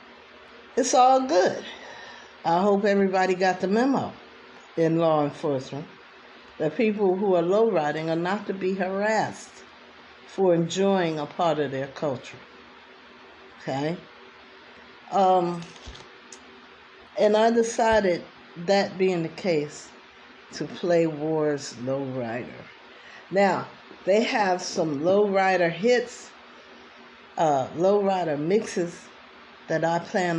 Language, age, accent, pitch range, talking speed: English, 60-79, American, 155-200 Hz, 105 wpm